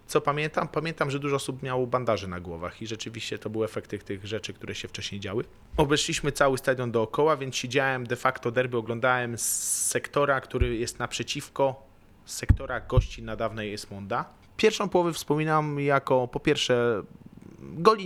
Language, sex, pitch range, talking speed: Polish, male, 110-140 Hz, 160 wpm